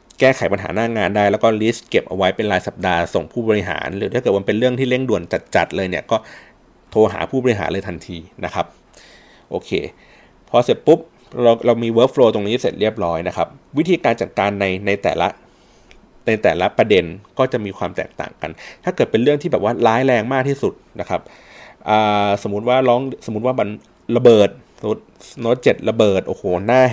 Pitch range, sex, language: 100-130 Hz, male, Thai